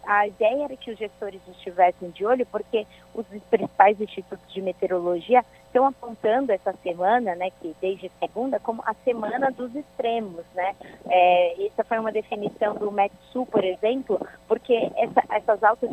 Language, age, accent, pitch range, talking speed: Portuguese, 20-39, Brazilian, 185-250 Hz, 160 wpm